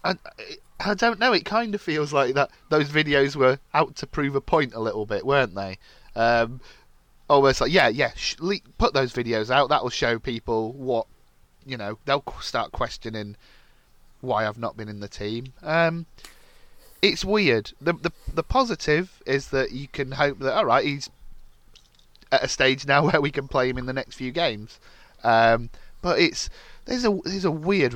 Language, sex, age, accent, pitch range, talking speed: English, male, 30-49, British, 105-140 Hz, 190 wpm